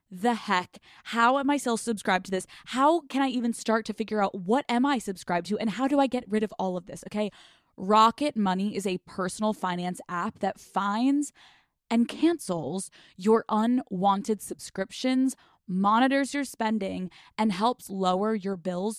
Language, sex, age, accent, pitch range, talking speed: English, female, 20-39, American, 185-230 Hz, 175 wpm